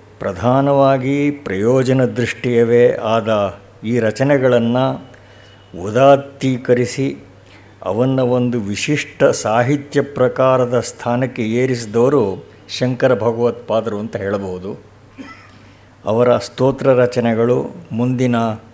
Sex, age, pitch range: male, 60-79, 110-125 Hz